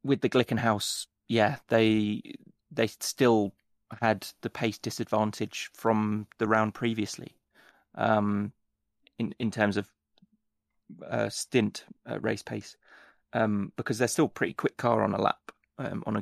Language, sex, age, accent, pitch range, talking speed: English, male, 20-39, British, 105-120 Hz, 145 wpm